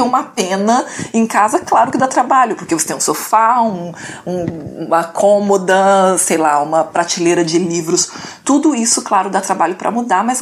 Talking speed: 165 wpm